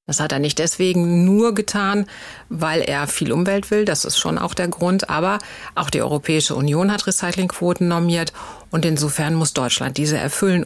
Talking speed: 180 wpm